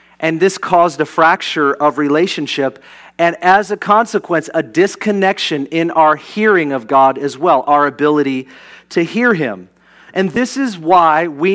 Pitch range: 155-200 Hz